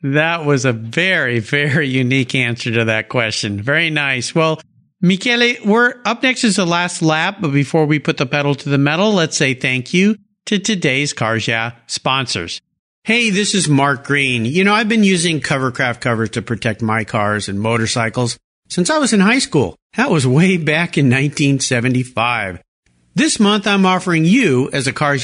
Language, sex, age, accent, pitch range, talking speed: English, male, 50-69, American, 130-200 Hz, 185 wpm